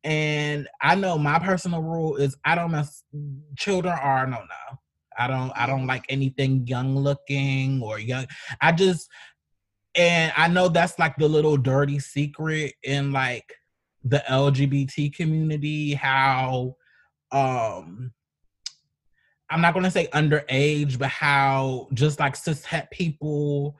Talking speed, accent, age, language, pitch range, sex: 135 wpm, American, 20-39, English, 135-165 Hz, male